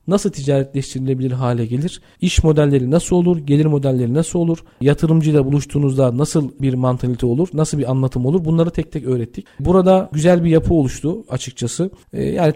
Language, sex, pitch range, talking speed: Turkish, male, 140-170 Hz, 160 wpm